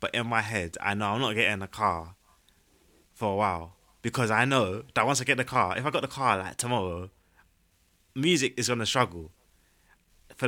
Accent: British